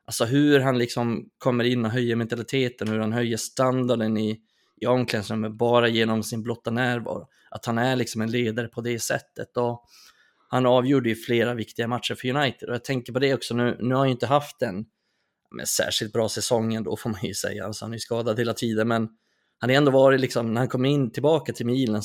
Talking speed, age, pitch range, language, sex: 220 wpm, 20-39, 115-130 Hz, Swedish, male